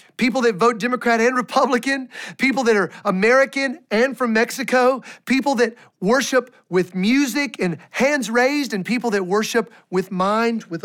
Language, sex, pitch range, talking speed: English, male, 170-225 Hz, 155 wpm